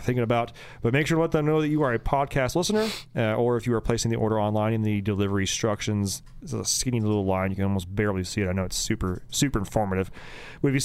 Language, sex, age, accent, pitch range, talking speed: English, male, 30-49, American, 110-140 Hz, 260 wpm